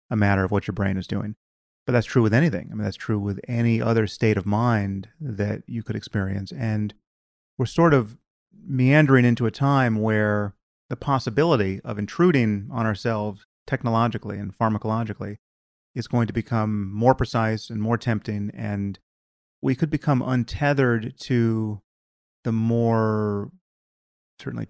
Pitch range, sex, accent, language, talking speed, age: 105-120 Hz, male, American, English, 155 wpm, 30-49